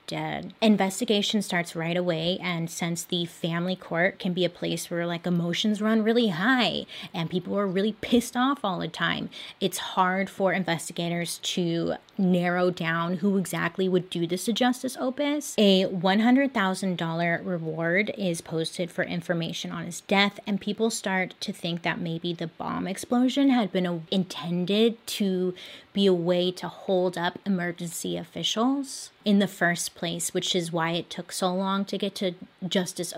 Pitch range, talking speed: 175-205 Hz, 165 wpm